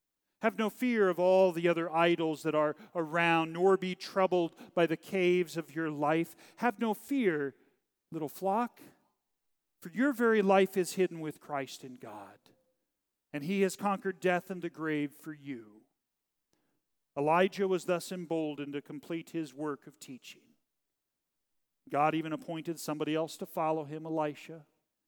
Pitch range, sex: 145-180 Hz, male